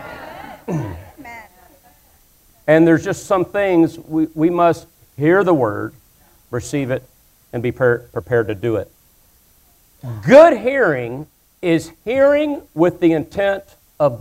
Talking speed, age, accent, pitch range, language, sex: 115 wpm, 50-69, American, 120-175 Hz, English, male